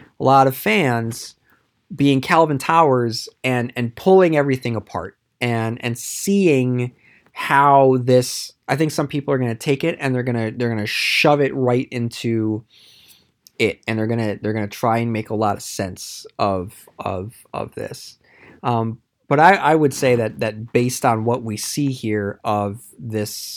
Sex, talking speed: male, 180 wpm